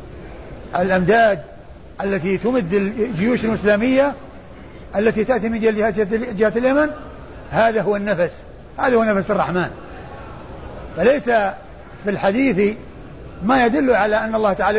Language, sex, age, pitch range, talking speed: Arabic, male, 60-79, 195-225 Hz, 105 wpm